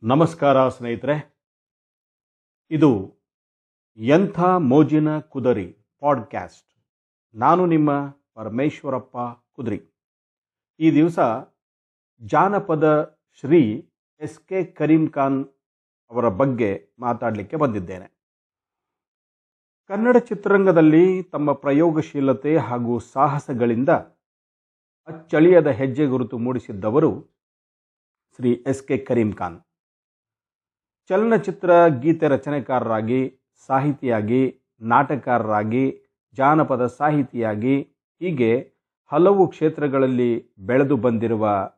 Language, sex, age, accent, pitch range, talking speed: Kannada, male, 50-69, native, 115-150 Hz, 70 wpm